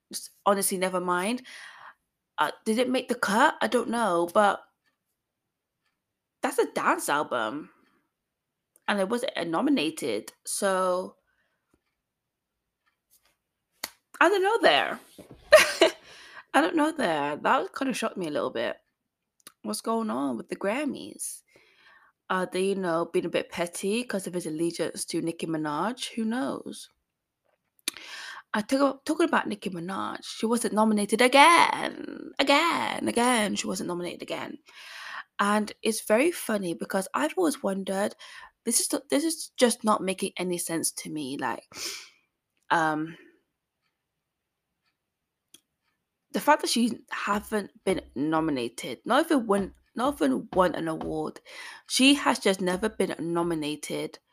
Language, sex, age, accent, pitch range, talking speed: English, female, 20-39, British, 185-280 Hz, 135 wpm